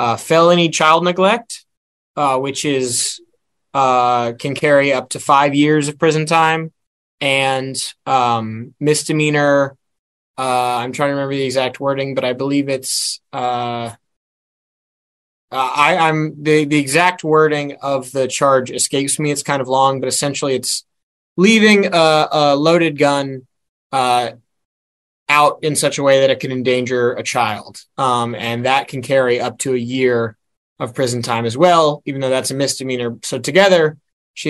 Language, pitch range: English, 125-150 Hz